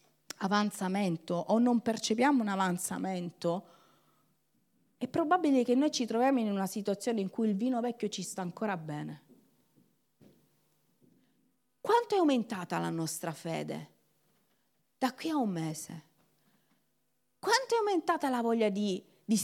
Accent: native